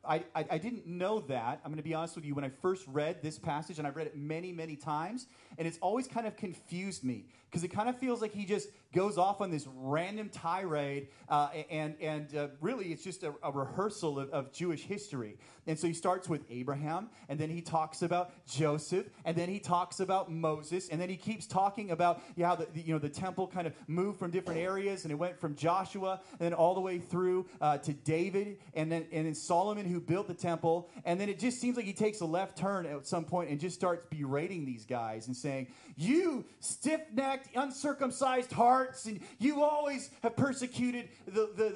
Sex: male